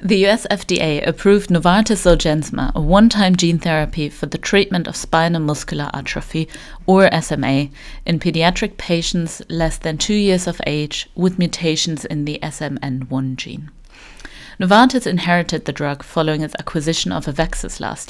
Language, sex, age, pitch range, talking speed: English, female, 30-49, 150-190 Hz, 145 wpm